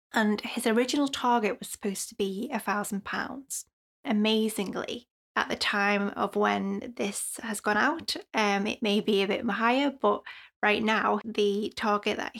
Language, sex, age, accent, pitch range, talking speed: English, female, 20-39, British, 205-230 Hz, 155 wpm